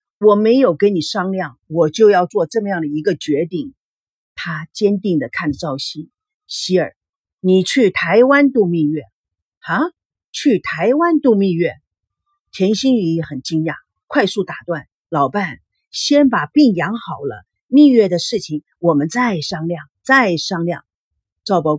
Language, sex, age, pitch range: Chinese, female, 50-69, 160-235 Hz